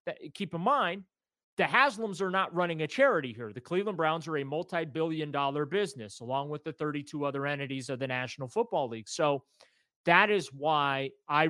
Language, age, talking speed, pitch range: English, 30-49, 185 wpm, 140-170 Hz